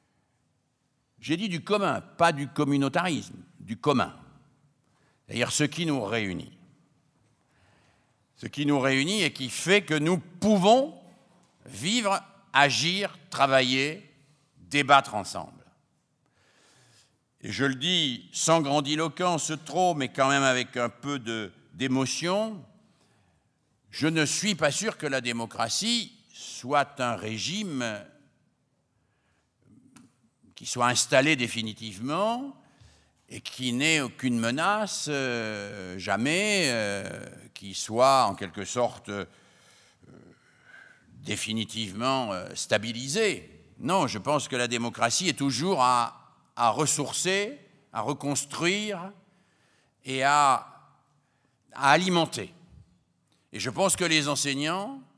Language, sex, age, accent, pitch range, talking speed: French, male, 60-79, French, 120-170 Hz, 105 wpm